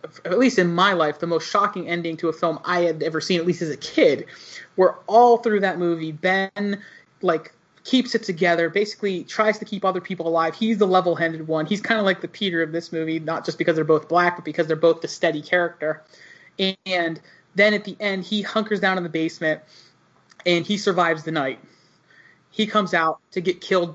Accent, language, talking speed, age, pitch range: American, English, 215 wpm, 30-49, 160-190 Hz